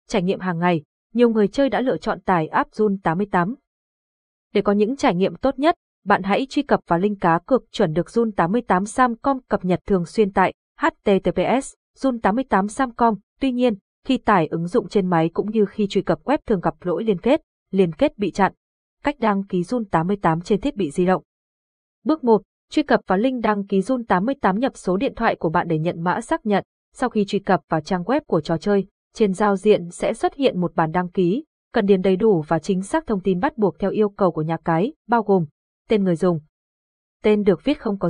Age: 20-39